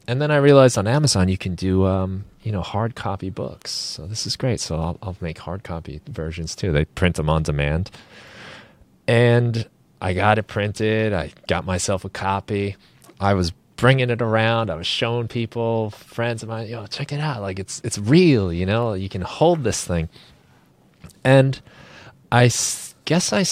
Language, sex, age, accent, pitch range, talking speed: English, male, 30-49, American, 90-115 Hz, 185 wpm